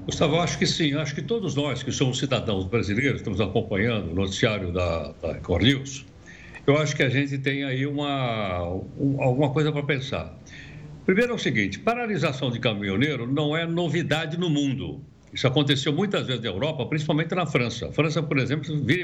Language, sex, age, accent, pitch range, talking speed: Portuguese, male, 60-79, Brazilian, 125-155 Hz, 185 wpm